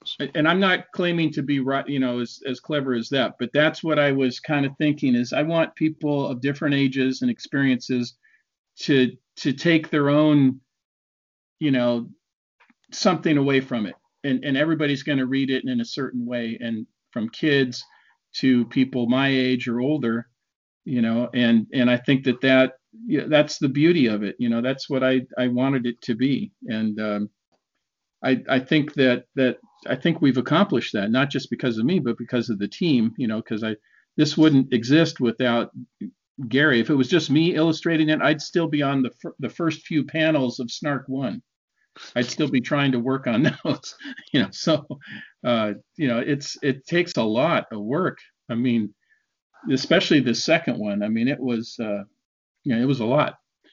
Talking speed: 195 wpm